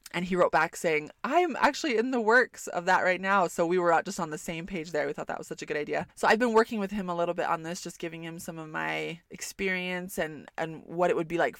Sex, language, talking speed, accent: female, English, 295 wpm, American